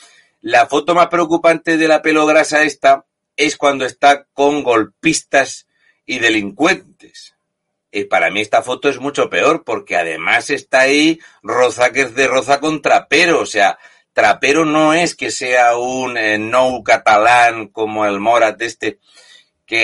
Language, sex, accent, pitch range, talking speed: Spanish, male, Spanish, 110-140 Hz, 150 wpm